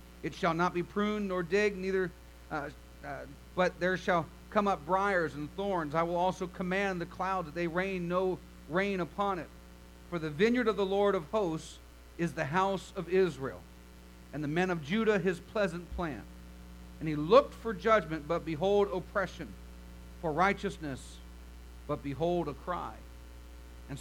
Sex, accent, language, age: male, American, English, 50-69